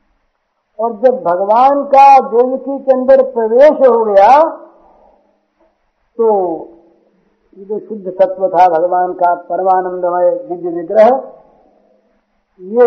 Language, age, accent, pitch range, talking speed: Hindi, 50-69, native, 175-260 Hz, 90 wpm